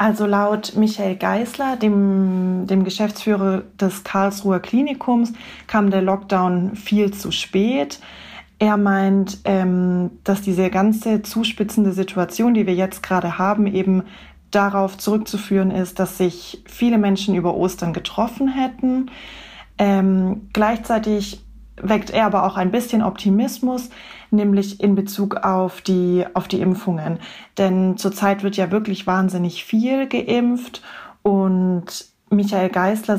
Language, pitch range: German, 185-215 Hz